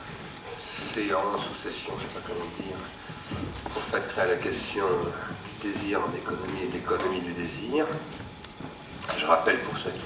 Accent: French